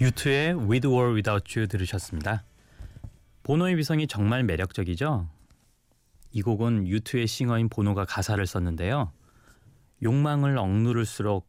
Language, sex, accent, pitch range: Korean, male, native, 95-140 Hz